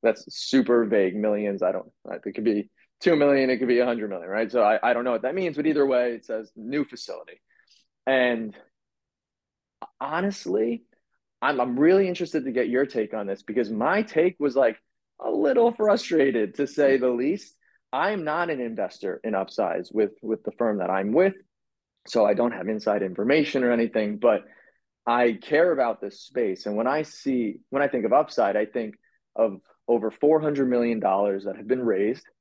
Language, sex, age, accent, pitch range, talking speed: English, male, 30-49, American, 110-145 Hz, 195 wpm